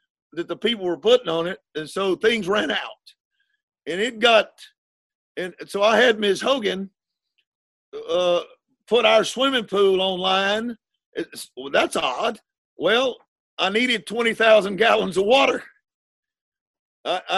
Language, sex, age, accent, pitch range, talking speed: English, male, 50-69, American, 180-235 Hz, 130 wpm